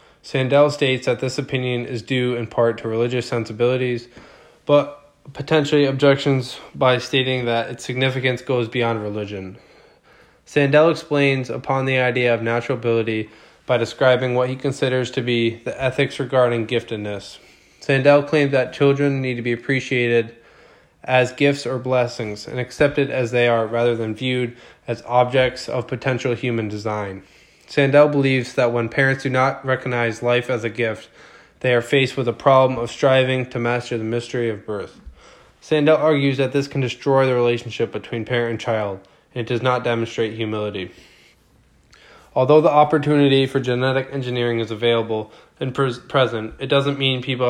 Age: 20-39